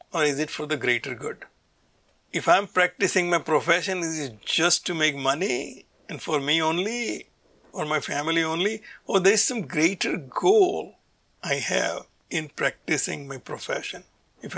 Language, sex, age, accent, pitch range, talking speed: English, male, 60-79, Indian, 140-180 Hz, 160 wpm